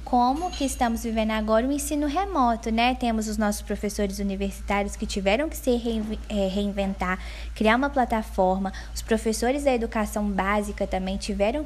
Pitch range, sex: 200-260 Hz, female